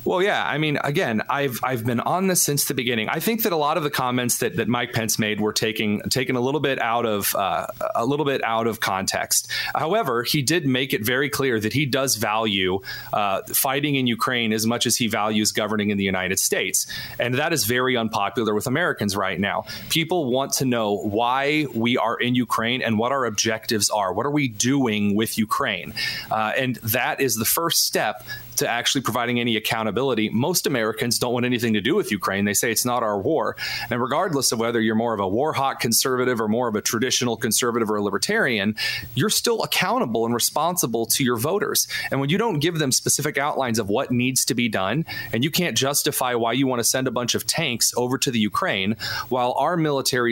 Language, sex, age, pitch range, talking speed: English, male, 30-49, 110-140 Hz, 220 wpm